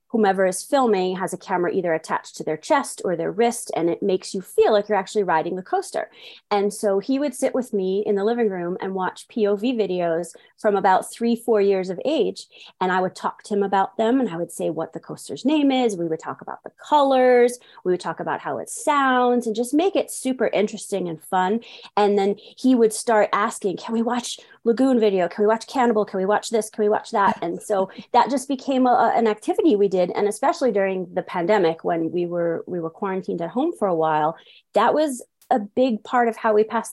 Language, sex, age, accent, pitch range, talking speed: English, female, 30-49, American, 185-235 Hz, 230 wpm